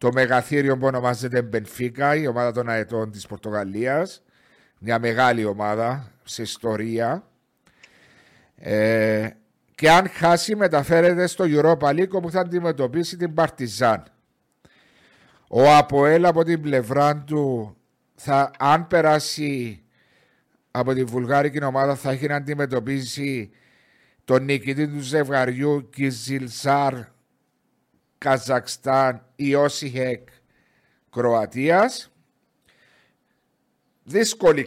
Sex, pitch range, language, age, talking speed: male, 120-150 Hz, Greek, 60-79, 90 wpm